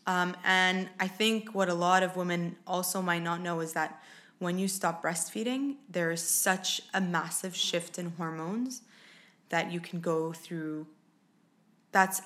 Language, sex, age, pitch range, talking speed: English, female, 20-39, 170-205 Hz, 160 wpm